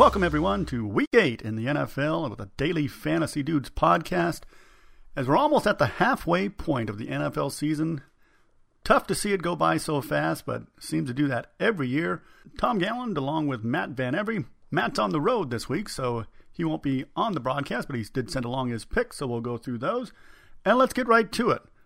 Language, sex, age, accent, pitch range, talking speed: English, male, 50-69, American, 125-175 Hz, 215 wpm